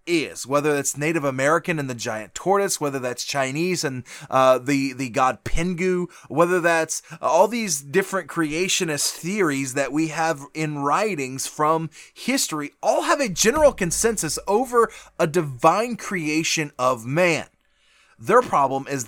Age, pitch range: 30-49, 140-195 Hz